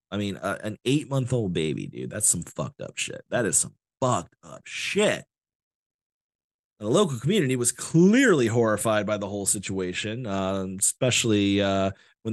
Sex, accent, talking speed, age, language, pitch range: male, American, 150 wpm, 30-49, English, 95-120 Hz